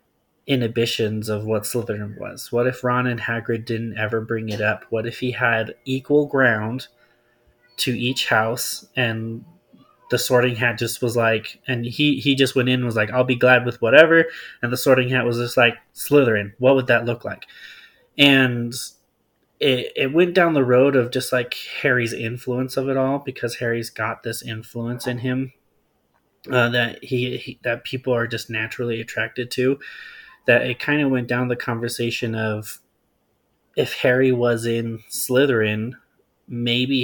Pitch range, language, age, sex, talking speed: 115-125 Hz, English, 20-39, male, 170 wpm